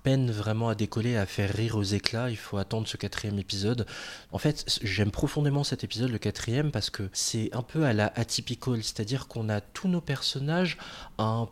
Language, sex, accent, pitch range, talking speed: French, male, French, 100-120 Hz, 210 wpm